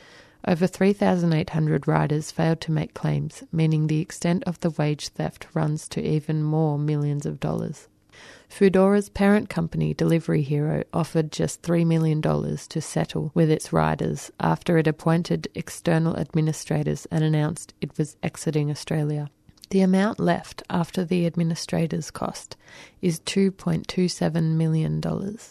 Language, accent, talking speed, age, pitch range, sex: English, Australian, 130 wpm, 30-49, 155-175 Hz, female